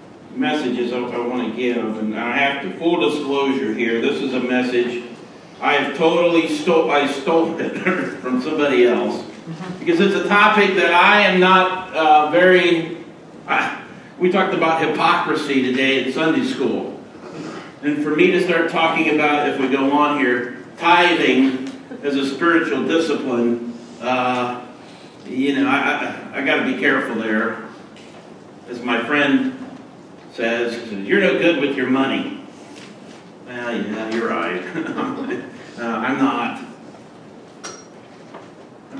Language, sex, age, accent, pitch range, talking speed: English, male, 50-69, American, 125-170 Hz, 140 wpm